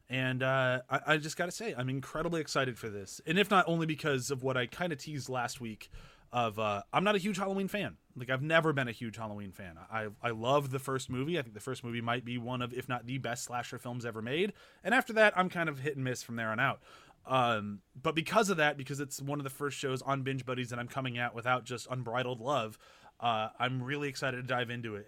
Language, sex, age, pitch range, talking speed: English, male, 30-49, 120-150 Hz, 260 wpm